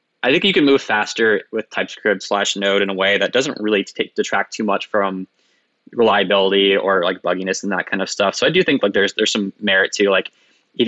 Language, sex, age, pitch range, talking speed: English, male, 10-29, 95-110 Hz, 230 wpm